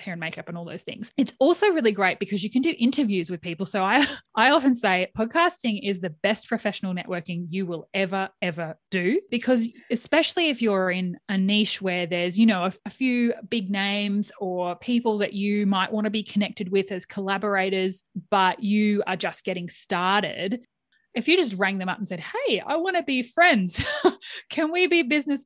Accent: Australian